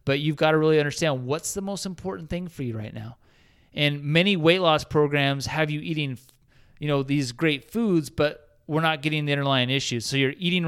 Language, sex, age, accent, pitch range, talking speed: English, male, 30-49, American, 130-185 Hz, 215 wpm